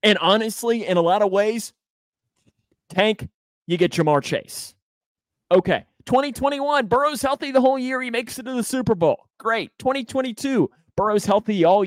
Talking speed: 155 wpm